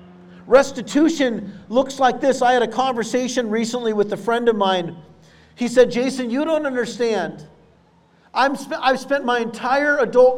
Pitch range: 225-270 Hz